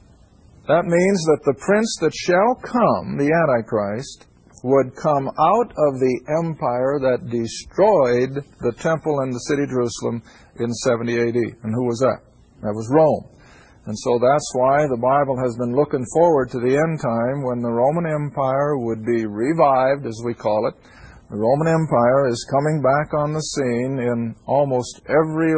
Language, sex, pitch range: English, male, 125-155 Hz